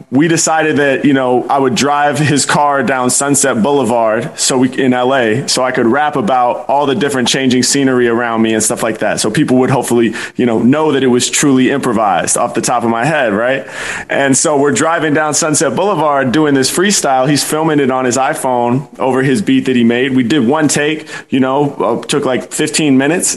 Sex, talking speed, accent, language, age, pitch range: male, 215 wpm, American, English, 20-39, 125-150 Hz